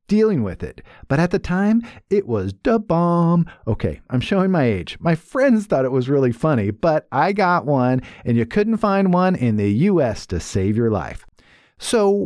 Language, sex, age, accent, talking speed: English, male, 50-69, American, 195 wpm